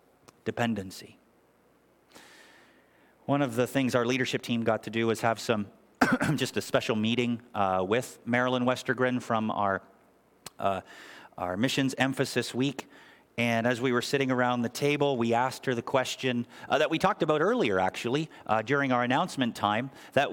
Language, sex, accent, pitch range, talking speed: English, male, American, 125-155 Hz, 160 wpm